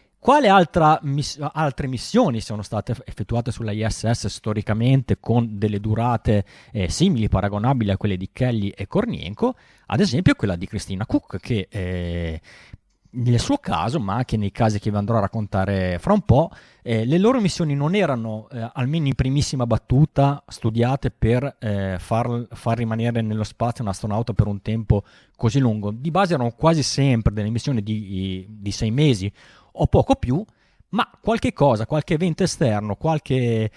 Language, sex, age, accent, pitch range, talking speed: Italian, male, 30-49, native, 110-140 Hz, 165 wpm